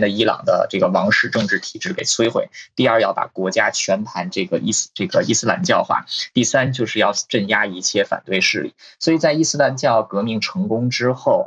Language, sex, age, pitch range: Chinese, male, 20-39, 105-135 Hz